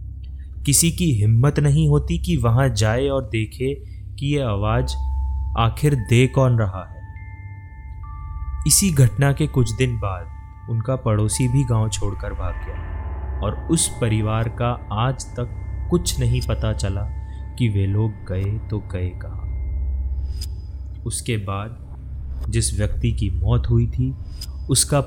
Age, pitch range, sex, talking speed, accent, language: 30-49, 85-120 Hz, male, 135 wpm, native, Hindi